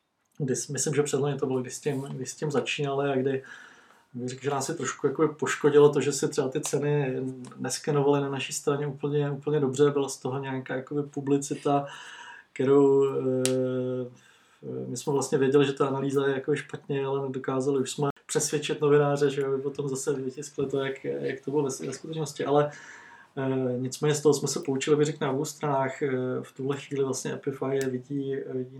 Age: 20-39